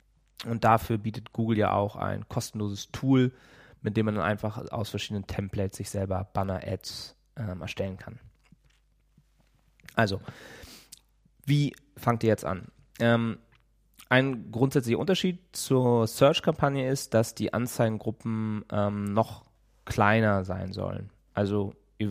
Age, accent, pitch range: 20-39, German, 100-120 Hz